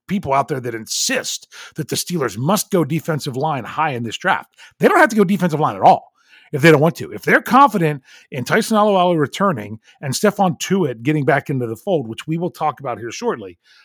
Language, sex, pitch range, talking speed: English, male, 140-180 Hz, 225 wpm